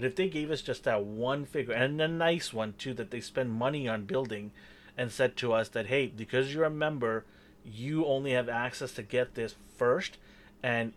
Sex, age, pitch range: male, 30-49, 110-135 Hz